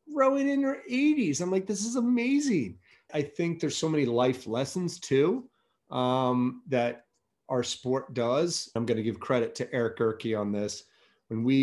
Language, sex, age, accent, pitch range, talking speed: English, male, 30-49, American, 115-155 Hz, 175 wpm